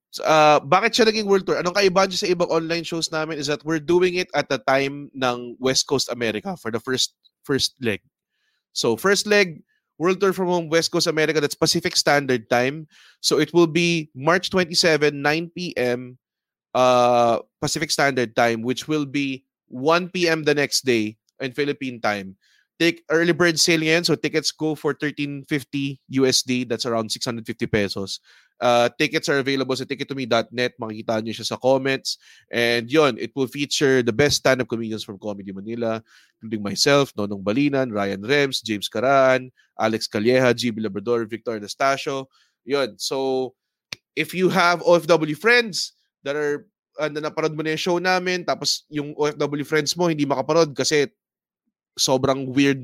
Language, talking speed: English, 160 wpm